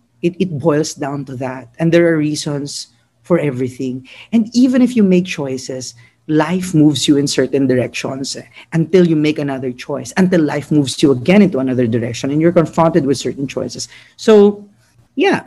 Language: English